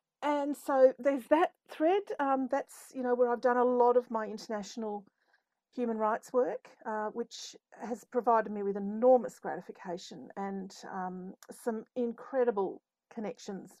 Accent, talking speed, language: Australian, 145 wpm, English